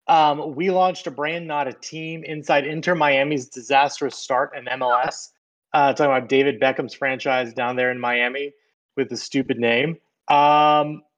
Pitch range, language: 130-165 Hz, English